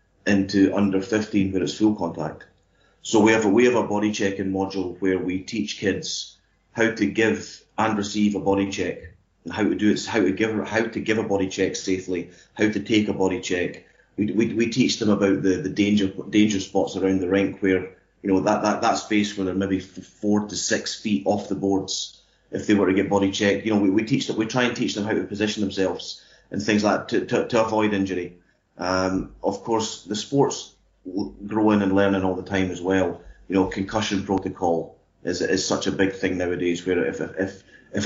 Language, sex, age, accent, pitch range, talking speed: English, male, 30-49, British, 95-105 Hz, 220 wpm